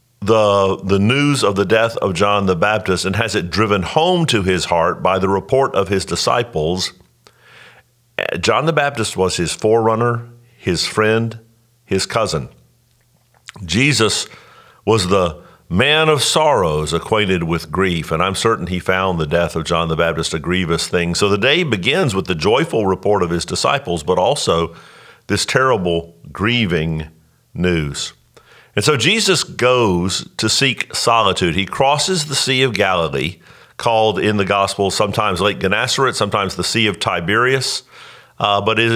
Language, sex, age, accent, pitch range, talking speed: English, male, 50-69, American, 90-120 Hz, 155 wpm